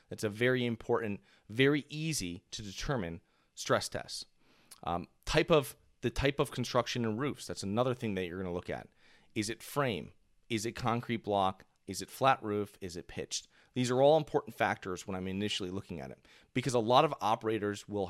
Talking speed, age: 195 wpm, 30-49